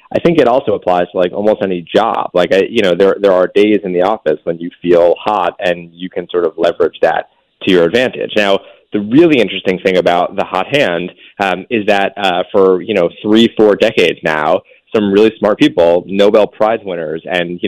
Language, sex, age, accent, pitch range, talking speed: English, male, 30-49, American, 90-110 Hz, 215 wpm